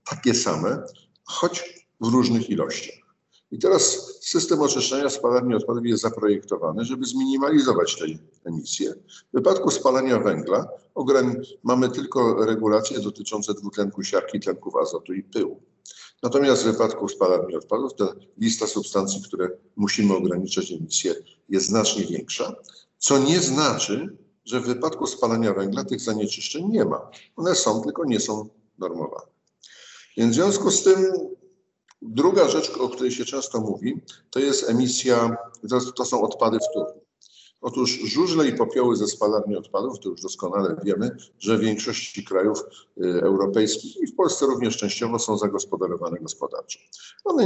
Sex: male